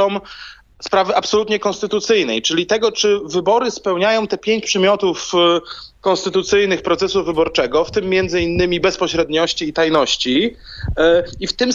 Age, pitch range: 30-49, 155-195 Hz